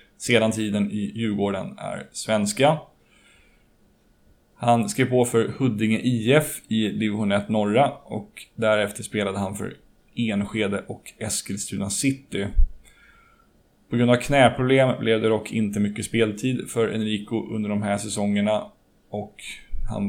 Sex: male